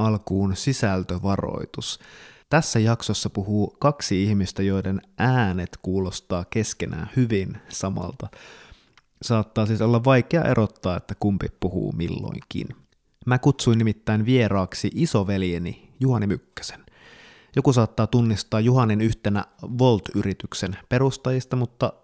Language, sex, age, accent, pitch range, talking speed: Finnish, male, 20-39, native, 90-120 Hz, 100 wpm